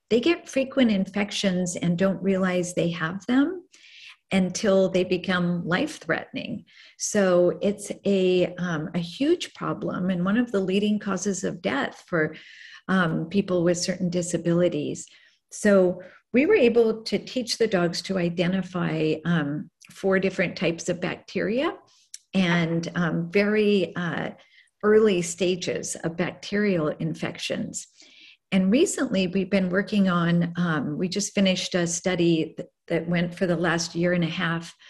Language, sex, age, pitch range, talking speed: English, female, 50-69, 175-210 Hz, 140 wpm